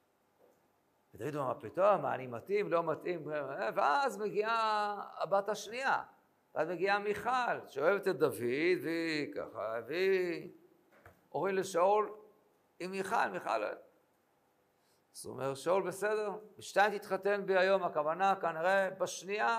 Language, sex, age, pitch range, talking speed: Hebrew, male, 50-69, 170-215 Hz, 120 wpm